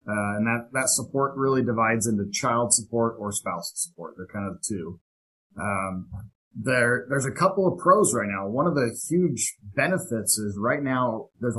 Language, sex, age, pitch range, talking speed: English, male, 30-49, 105-130 Hz, 180 wpm